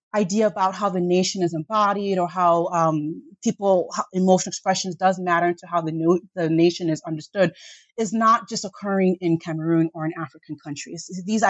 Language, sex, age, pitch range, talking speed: English, female, 30-49, 170-205 Hz, 185 wpm